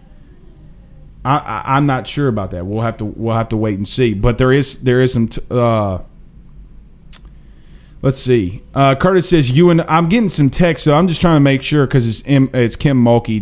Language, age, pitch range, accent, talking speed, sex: English, 30-49, 130-165 Hz, American, 205 wpm, male